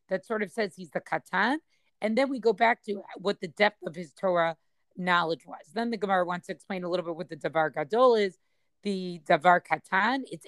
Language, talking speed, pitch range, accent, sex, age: English, 225 wpm, 175-225 Hz, American, female, 30-49